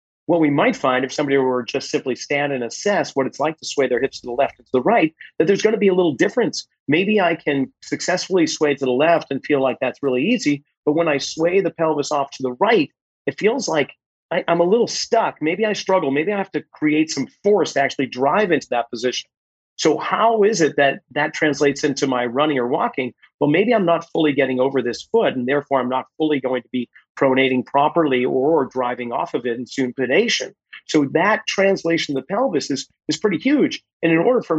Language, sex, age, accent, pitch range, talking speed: English, male, 40-59, American, 130-170 Hz, 230 wpm